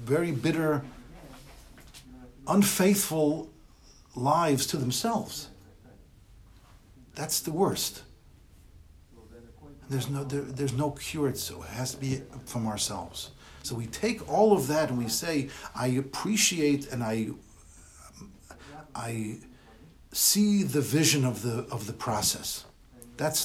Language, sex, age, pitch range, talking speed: English, male, 60-79, 105-145 Hz, 120 wpm